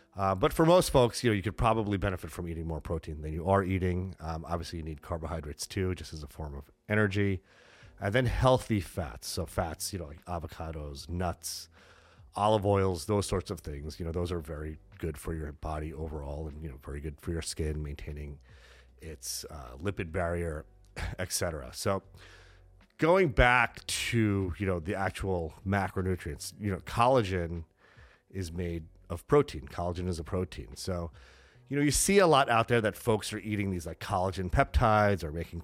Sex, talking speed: male, 185 wpm